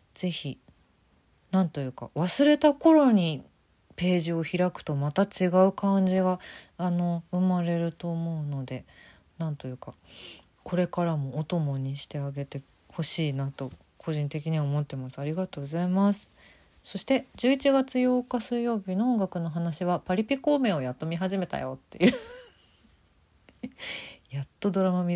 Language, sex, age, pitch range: Japanese, female, 40-59, 135-185 Hz